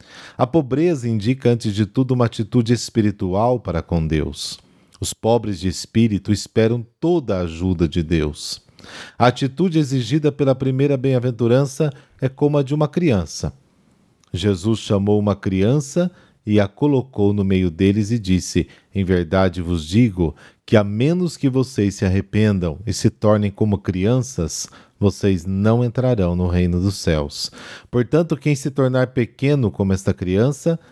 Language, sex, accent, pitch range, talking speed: Portuguese, male, Brazilian, 95-130 Hz, 150 wpm